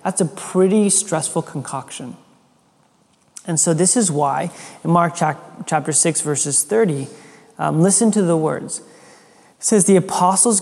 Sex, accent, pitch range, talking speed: male, American, 155-195 Hz, 140 wpm